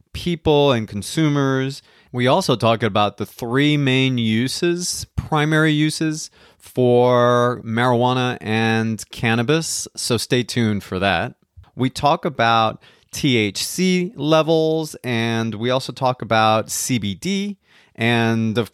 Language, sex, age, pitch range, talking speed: English, male, 30-49, 110-135 Hz, 110 wpm